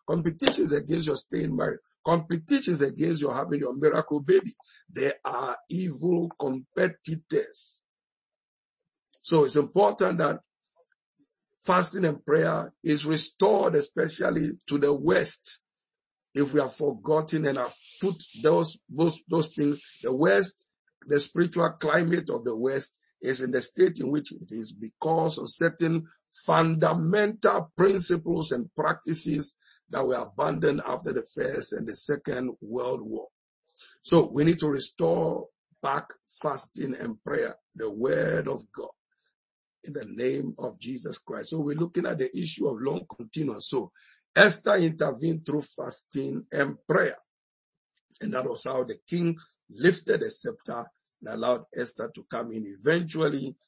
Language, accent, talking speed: English, Nigerian, 140 wpm